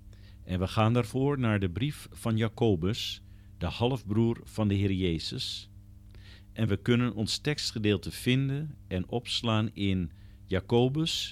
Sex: male